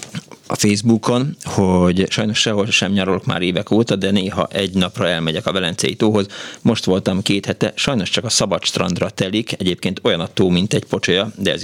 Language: Hungarian